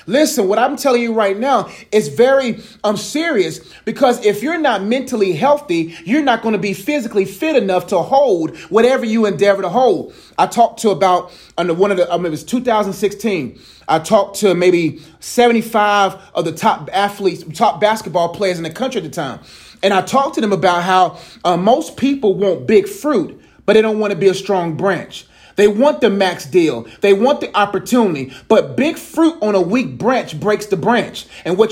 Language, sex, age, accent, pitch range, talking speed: English, male, 30-49, American, 185-245 Hz, 200 wpm